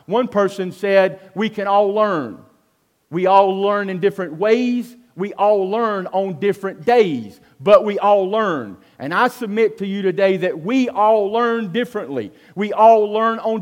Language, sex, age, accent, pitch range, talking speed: English, male, 40-59, American, 205-255 Hz, 165 wpm